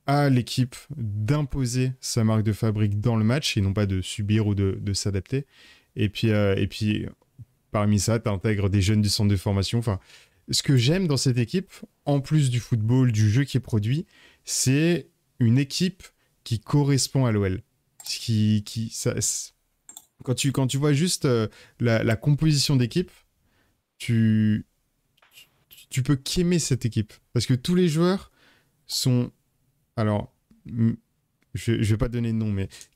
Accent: French